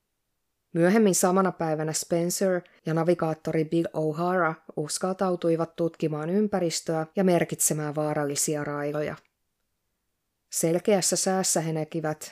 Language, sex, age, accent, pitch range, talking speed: Finnish, female, 20-39, native, 155-185 Hz, 95 wpm